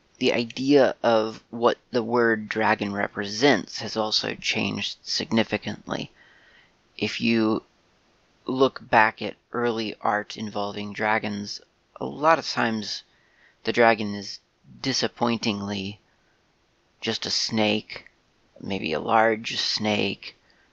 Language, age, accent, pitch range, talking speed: English, 30-49, American, 105-115 Hz, 105 wpm